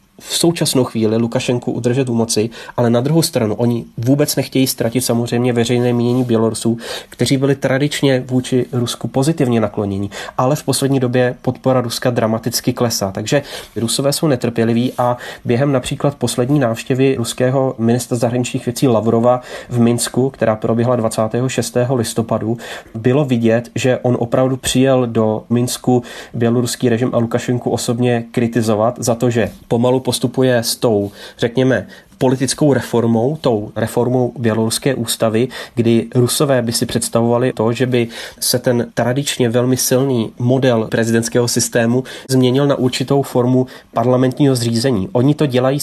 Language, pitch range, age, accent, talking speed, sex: Czech, 115-130 Hz, 30-49, native, 140 wpm, male